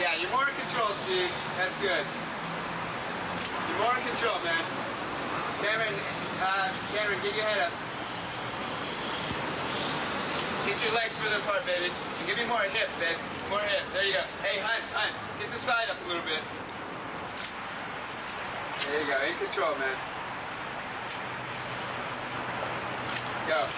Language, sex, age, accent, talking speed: Russian, male, 30-49, American, 135 wpm